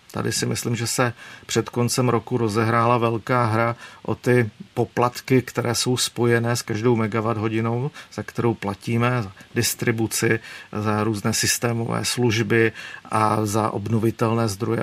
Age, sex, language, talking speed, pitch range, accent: 50-69, male, Czech, 140 wpm, 115-125 Hz, native